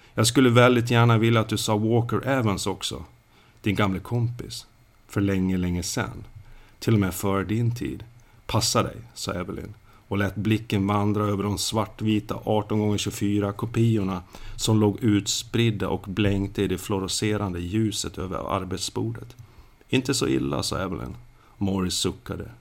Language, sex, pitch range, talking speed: Swedish, male, 100-115 Hz, 145 wpm